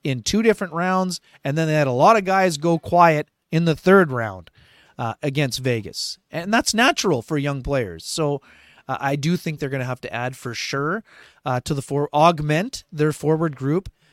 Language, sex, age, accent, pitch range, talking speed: English, male, 30-49, American, 125-155 Hz, 205 wpm